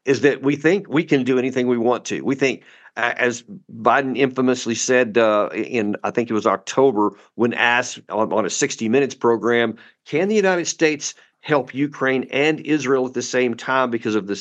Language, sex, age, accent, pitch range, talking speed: English, male, 50-69, American, 125-165 Hz, 190 wpm